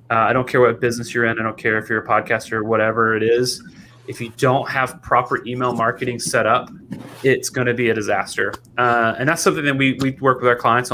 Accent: American